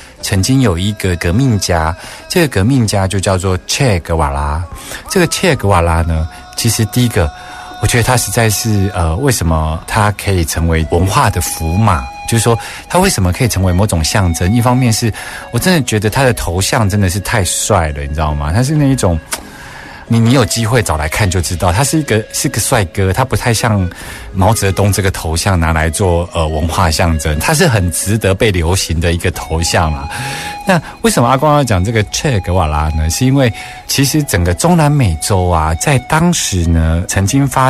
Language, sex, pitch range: Chinese, male, 85-120 Hz